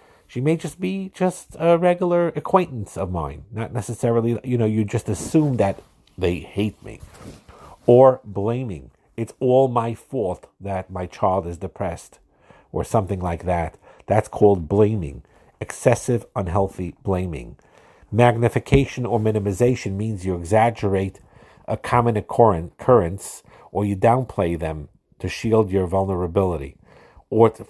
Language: English